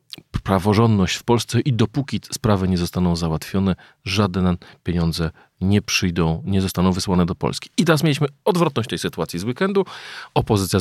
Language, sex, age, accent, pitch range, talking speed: Polish, male, 40-59, native, 90-110 Hz, 150 wpm